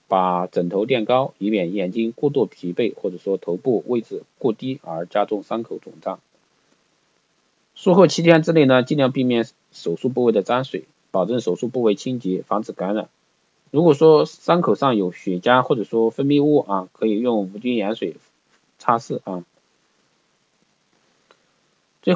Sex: male